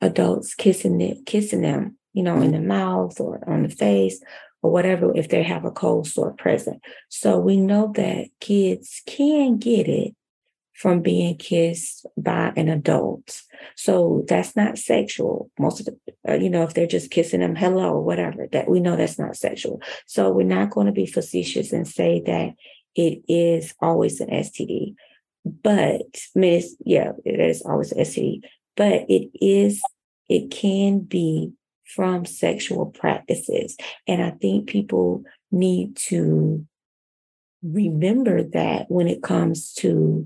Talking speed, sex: 160 wpm, female